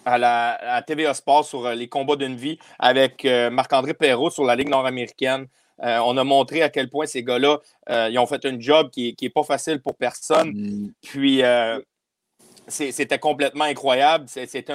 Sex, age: male, 30-49